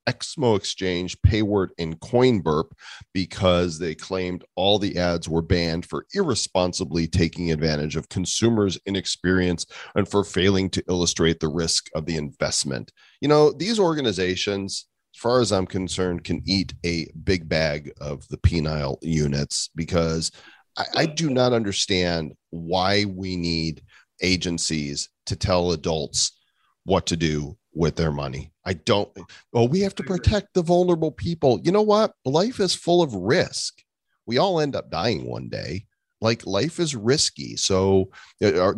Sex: male